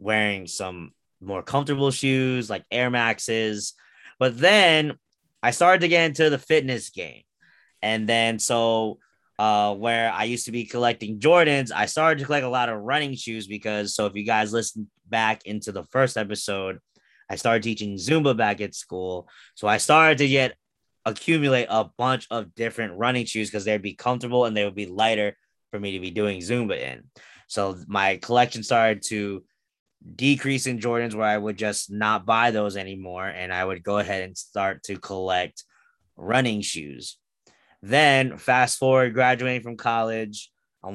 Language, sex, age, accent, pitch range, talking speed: English, male, 20-39, American, 100-120 Hz, 175 wpm